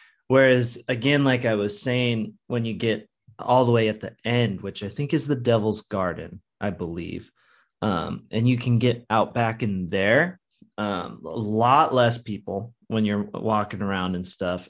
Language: English